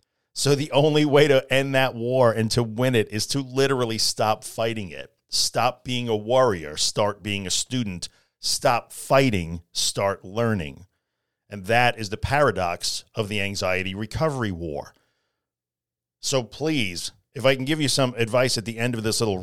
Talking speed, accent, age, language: 170 wpm, American, 40-59, English